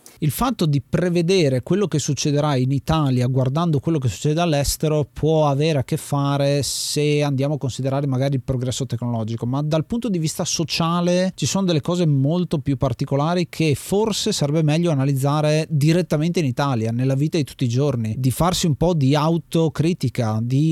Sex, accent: male, native